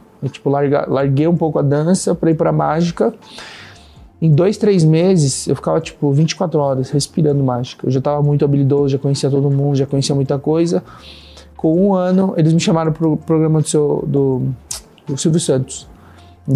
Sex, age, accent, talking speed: male, 20-39, Brazilian, 180 wpm